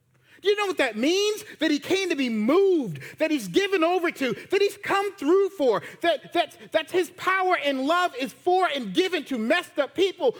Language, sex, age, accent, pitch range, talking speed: English, male, 40-59, American, 265-355 Hz, 200 wpm